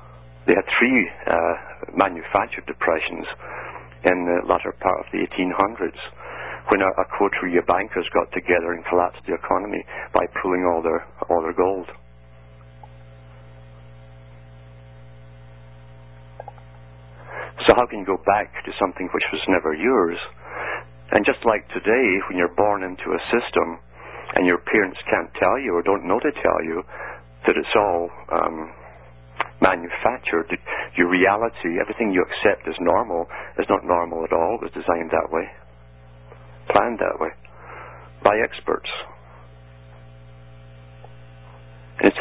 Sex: male